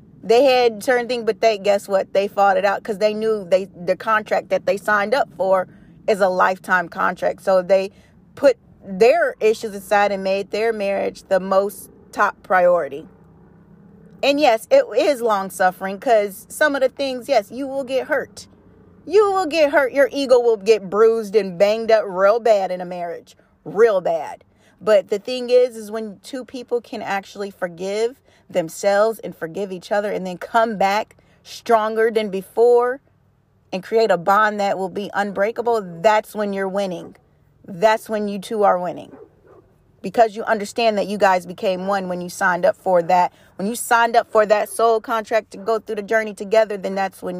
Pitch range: 195-225 Hz